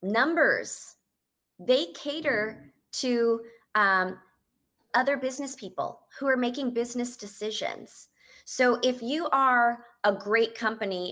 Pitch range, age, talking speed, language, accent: 195-245 Hz, 30-49, 110 wpm, English, American